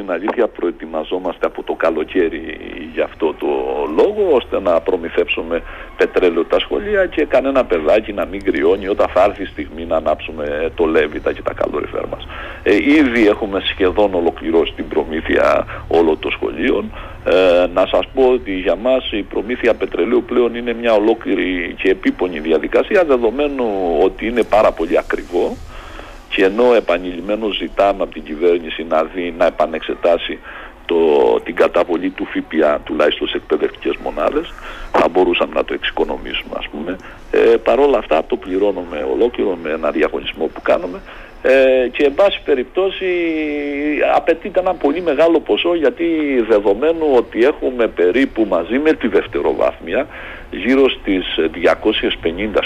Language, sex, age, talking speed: Greek, male, 60-79, 145 wpm